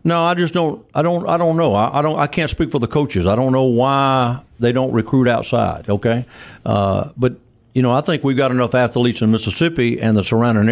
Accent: American